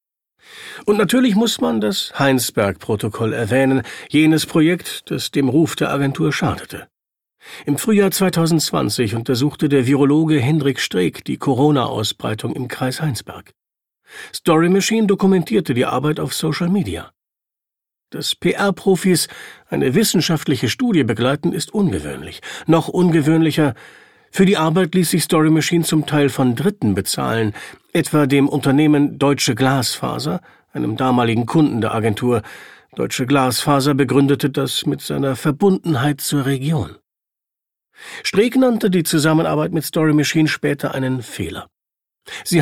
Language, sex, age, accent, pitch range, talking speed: German, male, 50-69, German, 135-175 Hz, 125 wpm